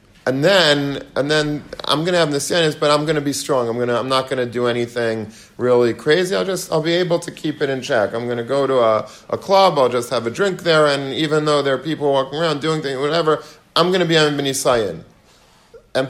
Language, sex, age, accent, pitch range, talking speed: English, male, 40-59, American, 120-155 Hz, 235 wpm